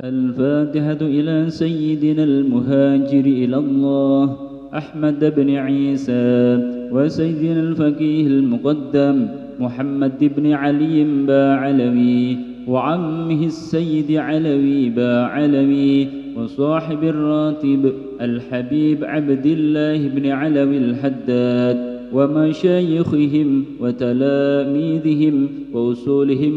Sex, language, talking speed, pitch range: male, Indonesian, 75 wpm, 125-150 Hz